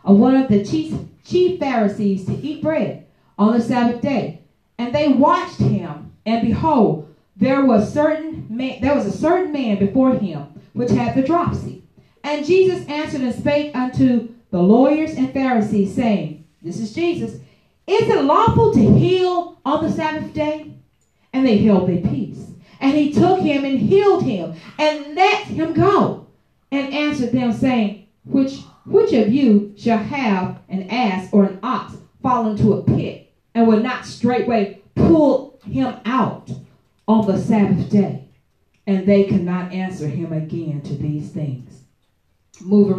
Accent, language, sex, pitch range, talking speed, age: American, English, female, 195-290 Hz, 160 wpm, 40-59